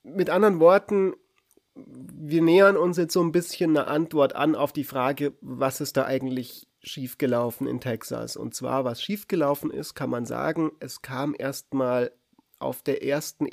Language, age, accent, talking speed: German, 30-49, German, 165 wpm